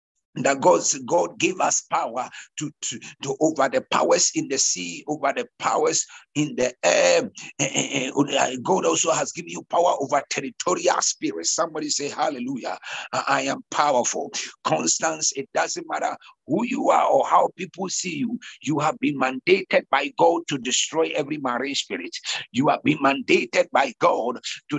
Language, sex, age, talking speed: English, male, 60-79, 165 wpm